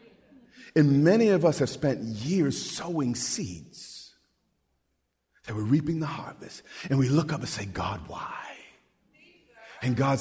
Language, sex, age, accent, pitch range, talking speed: English, male, 50-69, American, 105-160 Hz, 140 wpm